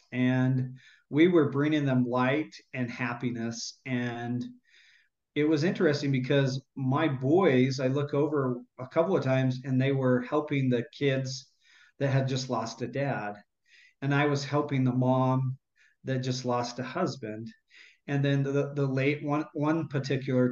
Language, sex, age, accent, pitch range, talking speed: English, male, 40-59, American, 125-145 Hz, 155 wpm